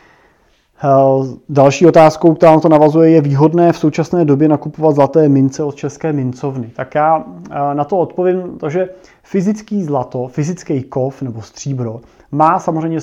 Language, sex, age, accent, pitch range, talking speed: Czech, male, 30-49, native, 135-155 Hz, 145 wpm